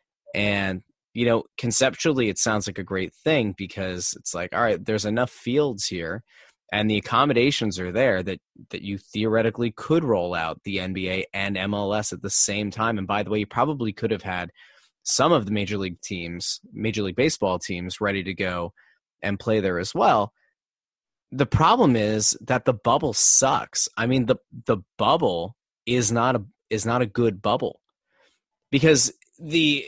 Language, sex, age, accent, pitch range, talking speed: English, male, 30-49, American, 100-130 Hz, 175 wpm